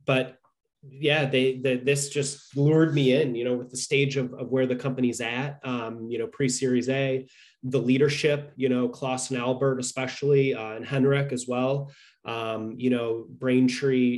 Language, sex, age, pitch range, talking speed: English, male, 20-39, 120-130 Hz, 180 wpm